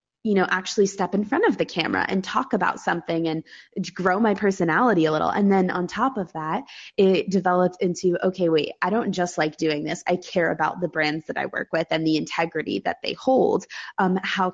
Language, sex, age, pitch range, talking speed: English, female, 20-39, 160-195 Hz, 220 wpm